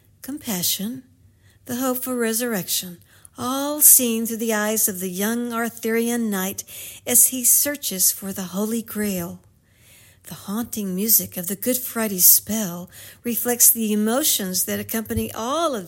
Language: English